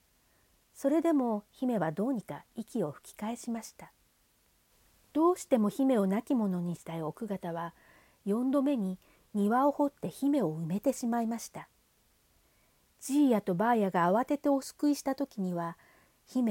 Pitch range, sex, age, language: 190-265 Hz, female, 40-59, Japanese